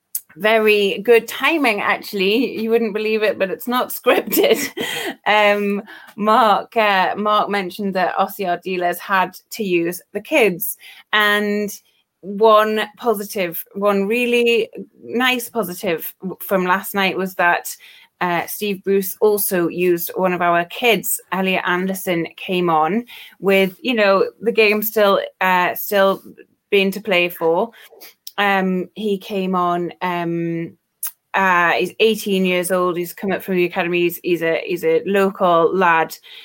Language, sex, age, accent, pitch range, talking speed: English, female, 20-39, British, 180-210 Hz, 140 wpm